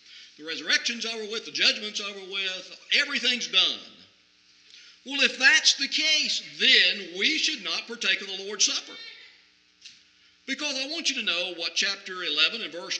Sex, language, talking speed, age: male, English, 160 wpm, 50-69